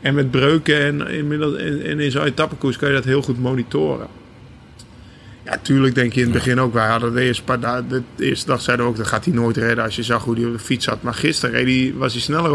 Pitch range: 115-140 Hz